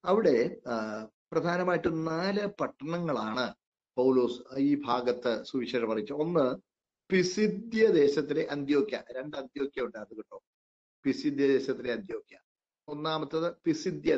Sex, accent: male, native